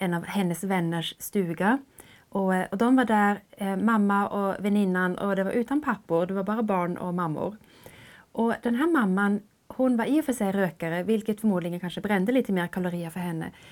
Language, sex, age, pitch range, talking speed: Swedish, female, 30-49, 185-240 Hz, 190 wpm